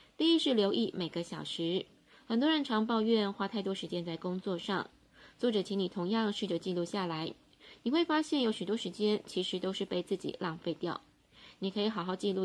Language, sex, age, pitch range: Chinese, female, 20-39, 180-220 Hz